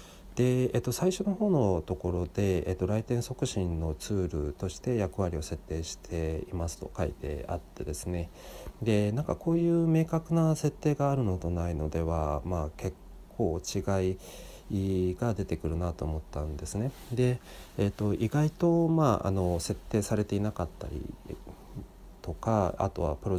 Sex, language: male, Japanese